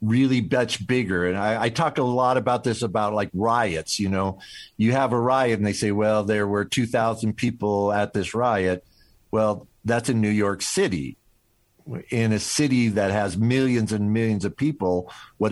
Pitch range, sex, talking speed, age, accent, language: 105-130 Hz, male, 185 wpm, 50-69, American, English